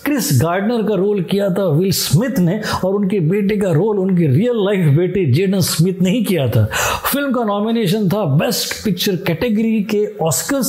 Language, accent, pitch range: Hindi, native, 185-235 Hz